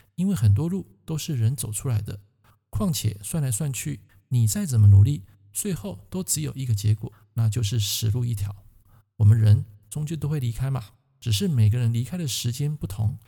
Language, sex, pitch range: Chinese, male, 105-155 Hz